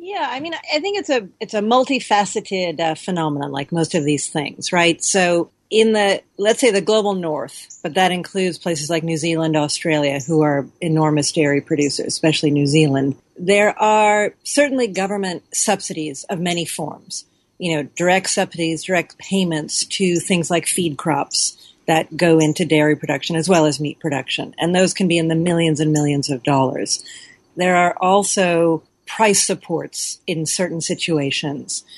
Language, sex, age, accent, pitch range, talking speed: English, female, 40-59, American, 155-190 Hz, 170 wpm